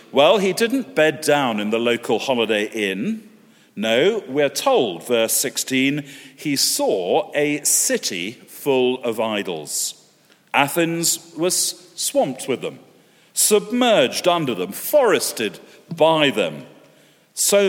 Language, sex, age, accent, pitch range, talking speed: English, male, 40-59, British, 120-170 Hz, 115 wpm